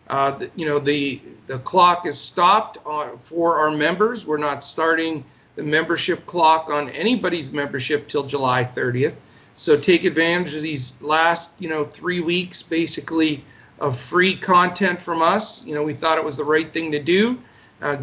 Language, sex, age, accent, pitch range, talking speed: English, male, 50-69, American, 145-175 Hz, 175 wpm